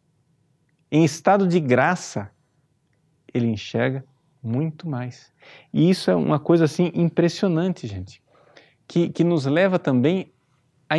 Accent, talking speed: Brazilian, 120 wpm